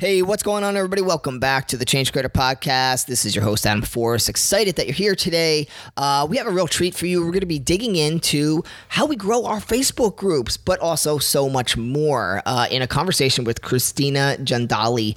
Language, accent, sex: English, American, male